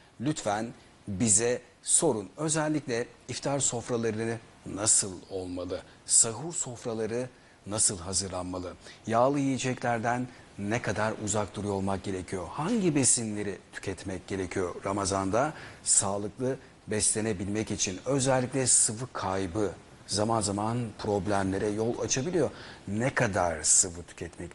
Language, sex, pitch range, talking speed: Turkish, male, 100-125 Hz, 100 wpm